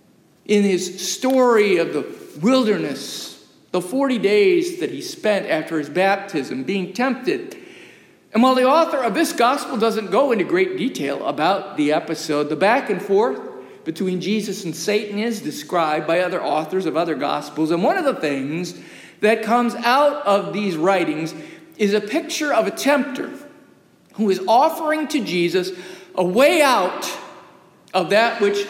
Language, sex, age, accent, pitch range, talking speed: English, male, 50-69, American, 185-290 Hz, 160 wpm